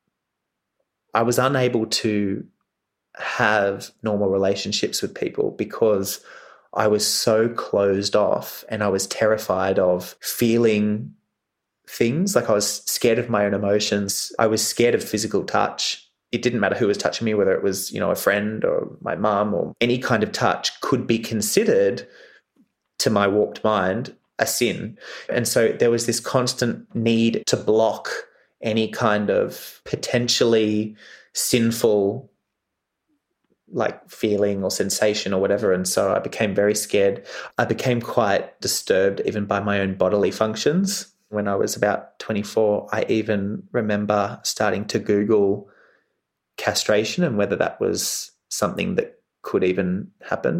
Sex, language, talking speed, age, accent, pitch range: male, English, 145 wpm, 20-39, Australian, 100-115 Hz